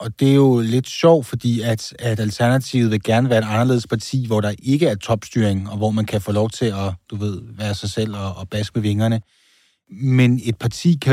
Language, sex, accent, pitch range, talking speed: Danish, male, native, 110-135 Hz, 230 wpm